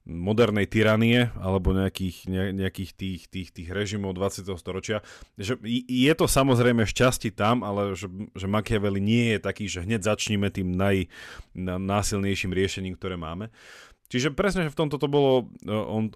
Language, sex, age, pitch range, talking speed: Slovak, male, 30-49, 95-115 Hz, 155 wpm